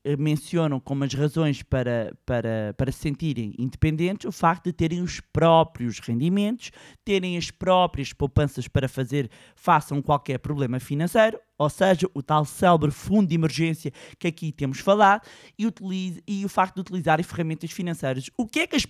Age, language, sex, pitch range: 20-39, Portuguese, male, 150-210 Hz